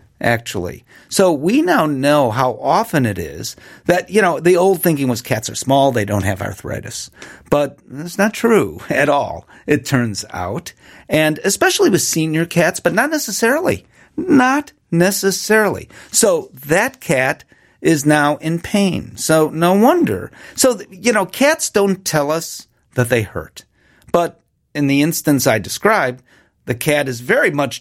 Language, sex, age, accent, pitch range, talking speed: English, male, 50-69, American, 130-175 Hz, 160 wpm